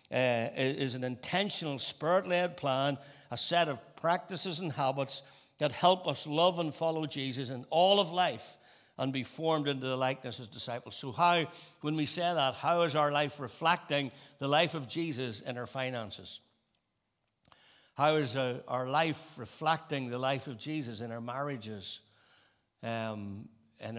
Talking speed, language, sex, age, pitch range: 160 wpm, English, male, 60-79, 120-155 Hz